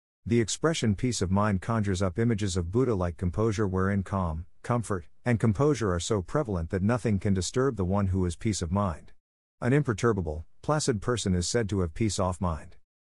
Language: English